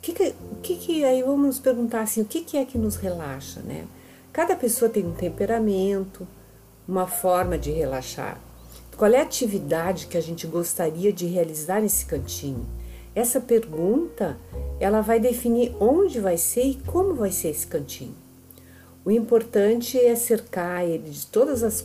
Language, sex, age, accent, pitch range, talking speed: Portuguese, female, 50-69, Brazilian, 145-205 Hz, 170 wpm